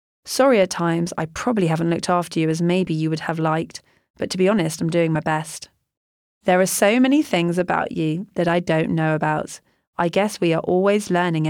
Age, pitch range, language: 30-49, 160-210 Hz, English